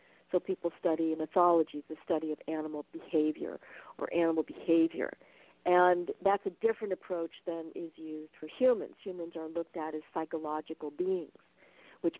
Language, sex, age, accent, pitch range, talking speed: English, female, 50-69, American, 155-180 Hz, 150 wpm